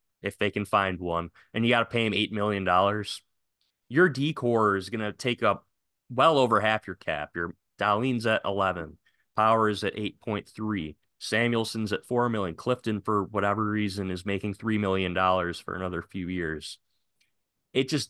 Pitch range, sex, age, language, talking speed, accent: 95-125 Hz, male, 30-49, English, 170 wpm, American